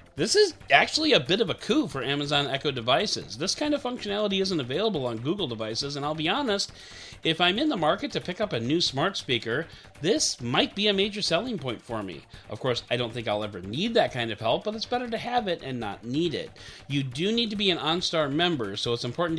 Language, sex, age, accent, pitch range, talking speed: English, male, 40-59, American, 120-185 Hz, 245 wpm